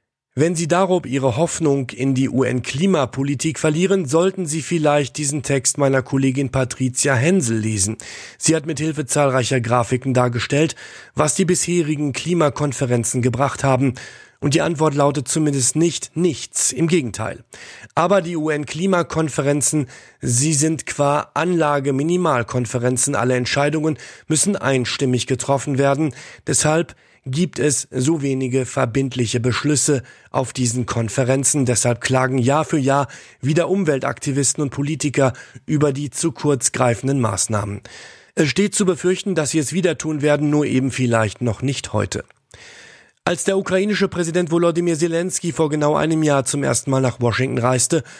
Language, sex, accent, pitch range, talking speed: German, male, German, 130-155 Hz, 135 wpm